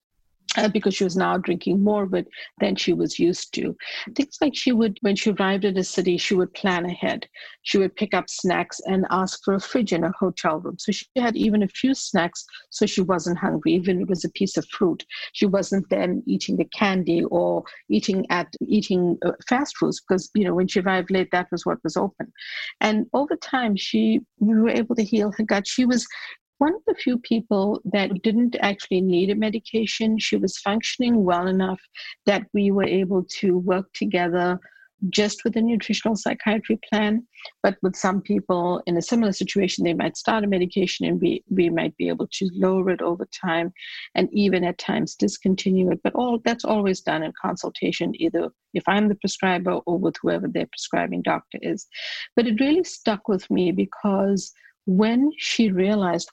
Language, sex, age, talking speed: English, female, 50-69, 195 wpm